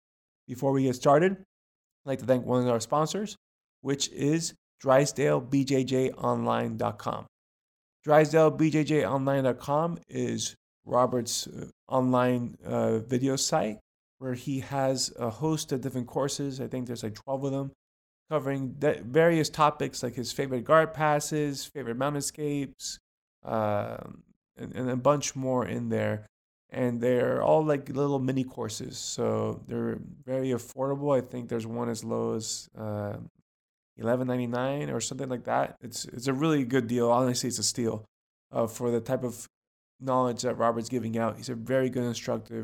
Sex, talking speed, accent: male, 150 wpm, American